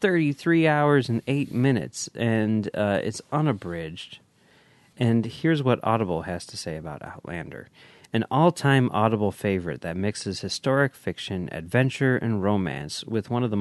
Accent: American